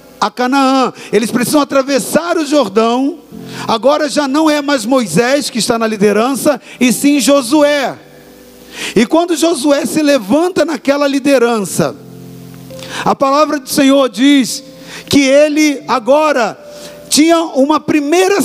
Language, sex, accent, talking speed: Portuguese, male, Brazilian, 125 wpm